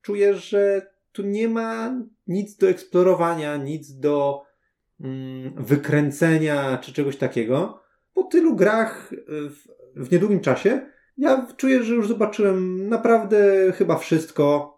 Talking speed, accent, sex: 120 wpm, native, male